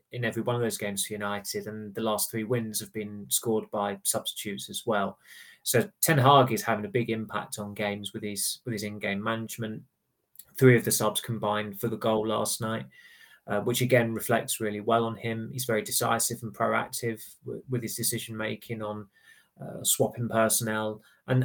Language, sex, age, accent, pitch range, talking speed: English, male, 20-39, British, 110-125 Hz, 195 wpm